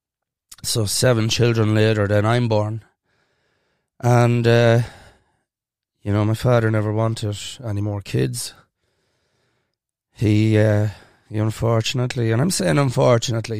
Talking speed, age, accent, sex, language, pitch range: 115 wpm, 20-39, Irish, male, English, 110-120 Hz